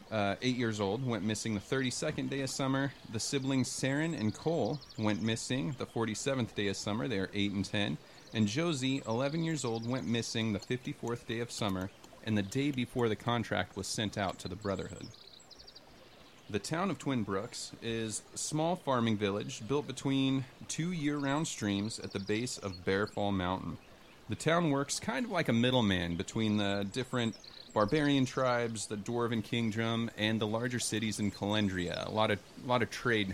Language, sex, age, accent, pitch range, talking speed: English, male, 30-49, American, 105-135 Hz, 185 wpm